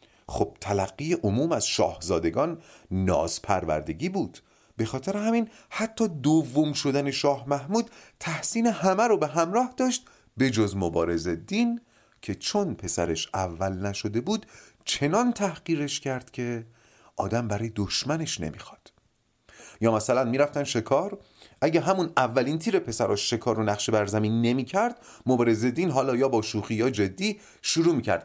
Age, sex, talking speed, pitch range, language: 30-49, male, 140 wpm, 100-165 Hz, Persian